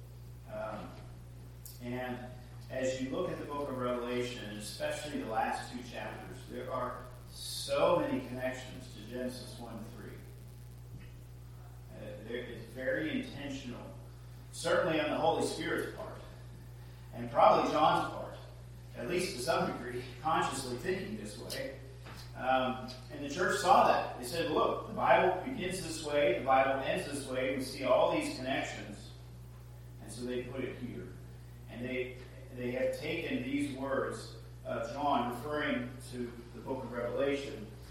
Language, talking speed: English, 140 wpm